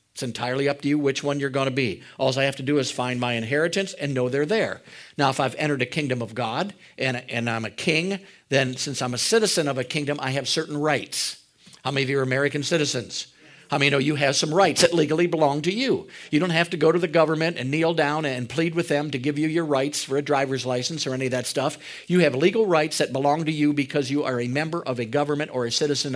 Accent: American